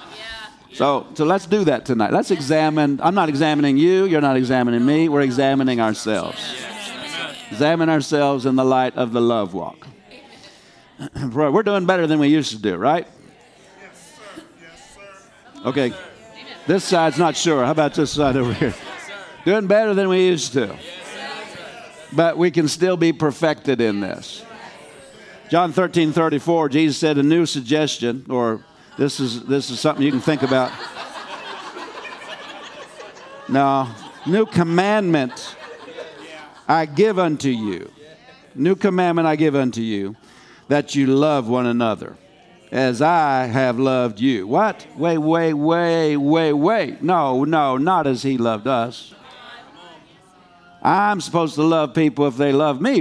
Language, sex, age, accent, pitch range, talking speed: English, male, 50-69, American, 130-165 Hz, 145 wpm